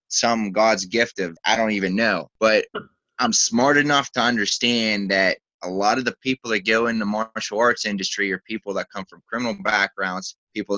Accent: American